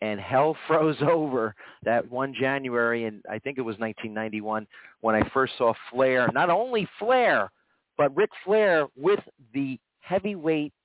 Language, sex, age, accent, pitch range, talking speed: English, male, 40-59, American, 120-150 Hz, 150 wpm